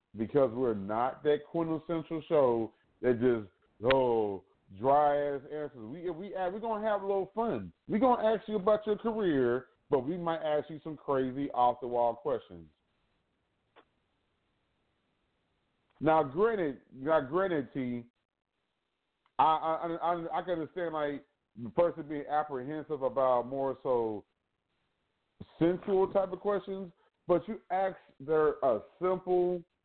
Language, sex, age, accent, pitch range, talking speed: English, male, 30-49, American, 135-190 Hz, 140 wpm